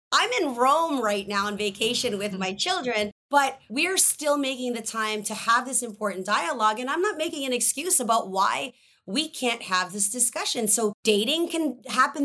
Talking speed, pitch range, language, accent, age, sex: 190 wpm, 195-250 Hz, English, American, 30-49, female